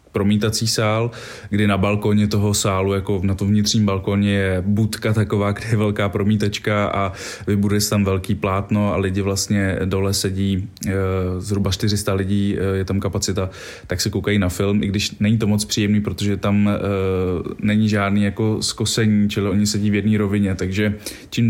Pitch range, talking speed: 100-105 Hz, 170 wpm